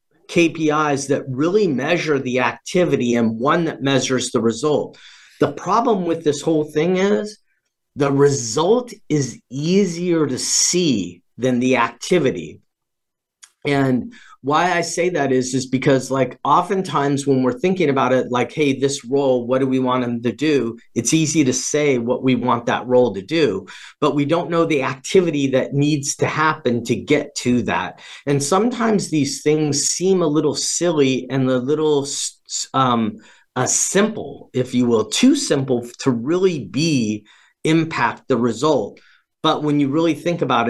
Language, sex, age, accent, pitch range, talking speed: English, male, 40-59, American, 125-160 Hz, 160 wpm